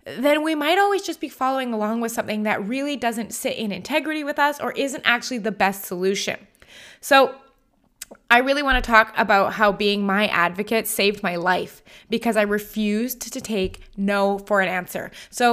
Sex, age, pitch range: female, 20-39, 210-280 Hz